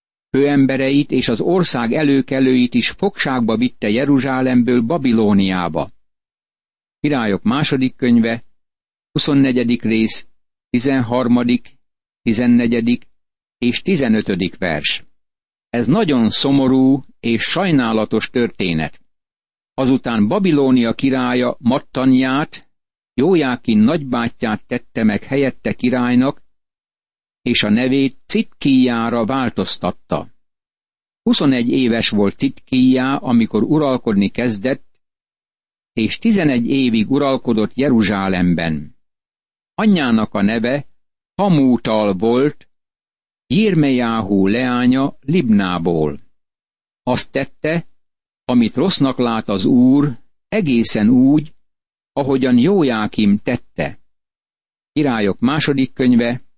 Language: Hungarian